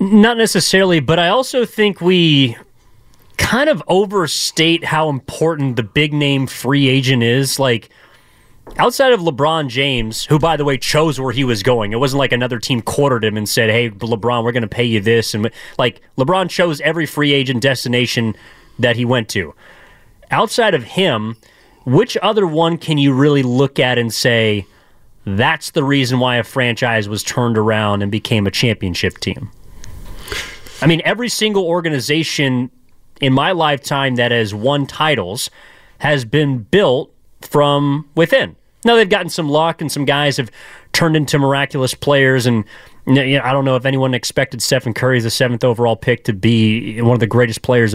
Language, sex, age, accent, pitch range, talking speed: English, male, 30-49, American, 120-155 Hz, 170 wpm